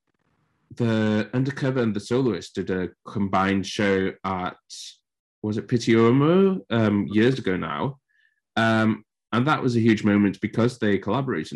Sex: male